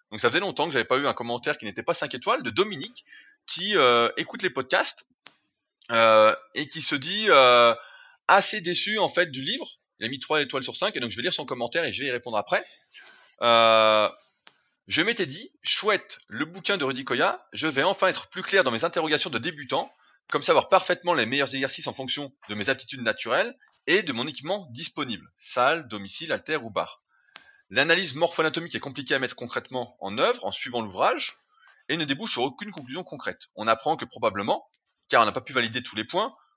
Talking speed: 210 wpm